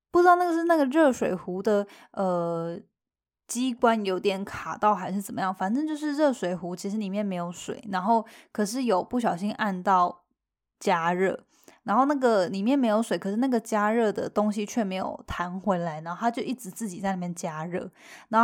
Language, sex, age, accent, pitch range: Chinese, female, 10-29, native, 190-255 Hz